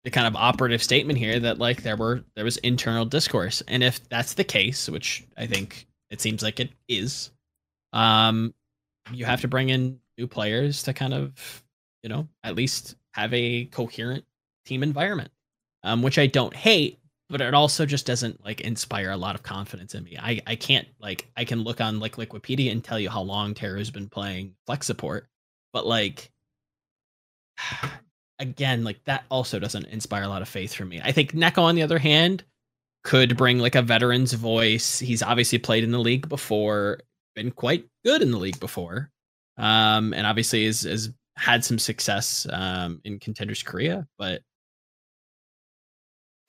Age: 10-29